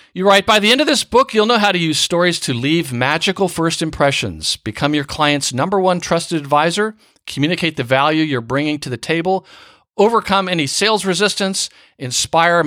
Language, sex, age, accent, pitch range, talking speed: English, male, 50-69, American, 120-180 Hz, 185 wpm